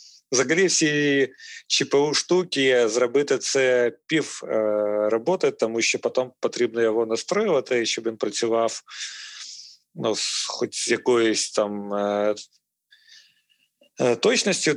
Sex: male